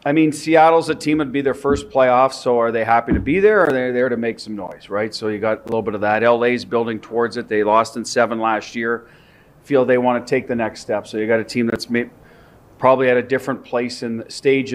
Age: 40-59